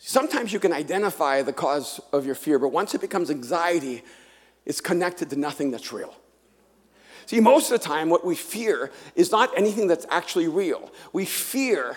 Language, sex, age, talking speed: English, male, 40-59, 180 wpm